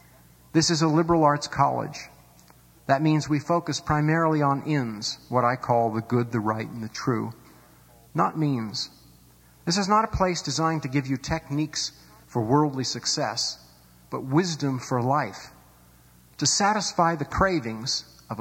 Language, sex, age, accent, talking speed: English, male, 50-69, American, 155 wpm